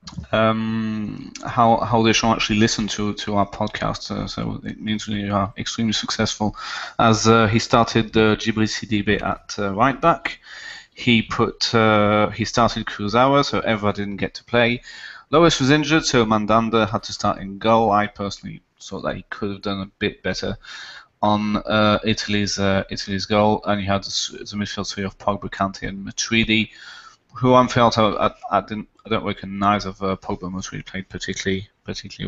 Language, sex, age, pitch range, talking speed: English, male, 20-39, 100-115 Hz, 185 wpm